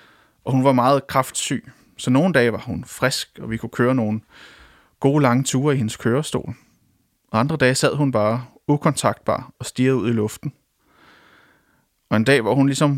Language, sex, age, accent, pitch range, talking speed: English, male, 30-49, Danish, 120-145 Hz, 185 wpm